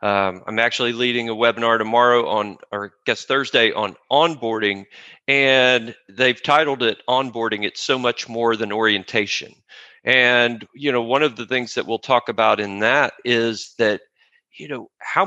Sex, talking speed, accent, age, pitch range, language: male, 165 wpm, American, 40-59, 115-135 Hz, English